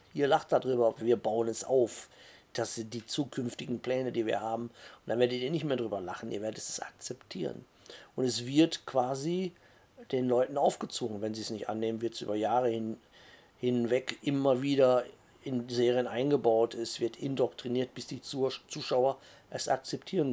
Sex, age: male, 50-69